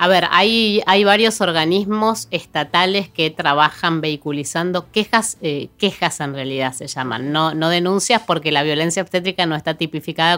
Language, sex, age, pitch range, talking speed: Spanish, female, 20-39, 150-185 Hz, 155 wpm